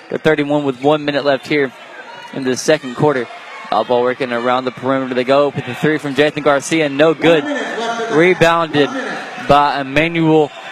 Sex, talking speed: male, 160 wpm